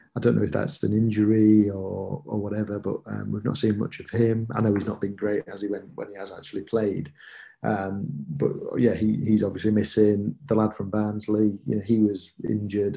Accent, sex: British, male